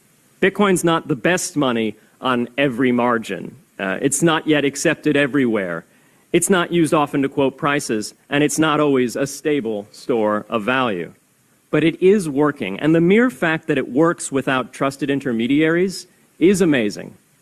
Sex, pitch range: male, 130-170 Hz